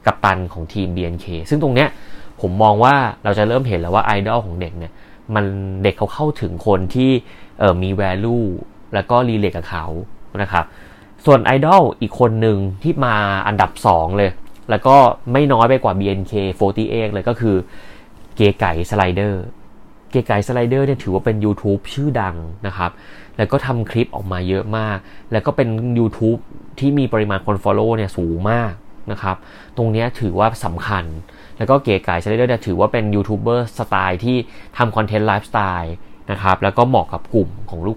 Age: 20-39